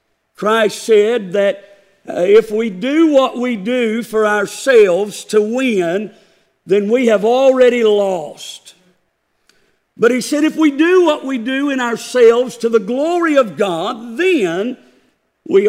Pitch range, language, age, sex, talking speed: 210-255 Hz, English, 50-69, male, 140 wpm